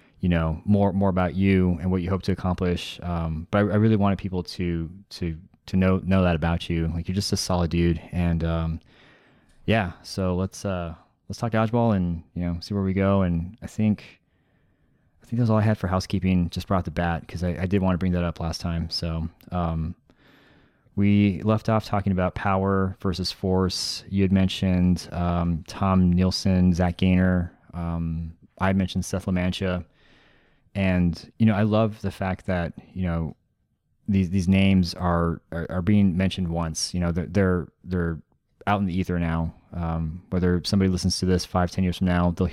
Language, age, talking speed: English, 30-49, 200 wpm